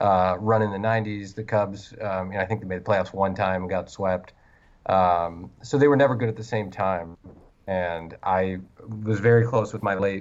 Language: English